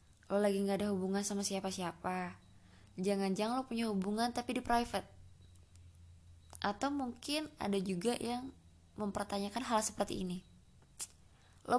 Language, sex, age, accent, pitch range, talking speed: Indonesian, female, 20-39, native, 195-245 Hz, 120 wpm